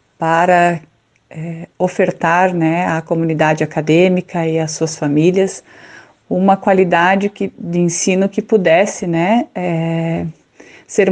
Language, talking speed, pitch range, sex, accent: Portuguese, 115 wpm, 165-195 Hz, female, Brazilian